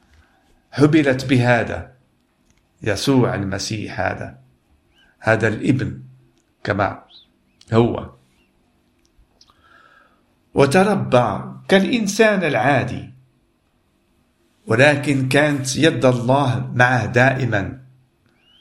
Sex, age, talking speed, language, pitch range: male, 50-69, 60 wpm, Arabic, 105-135 Hz